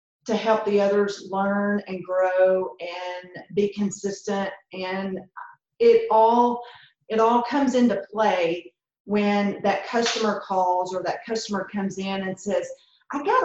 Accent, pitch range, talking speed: American, 195-240 Hz, 140 wpm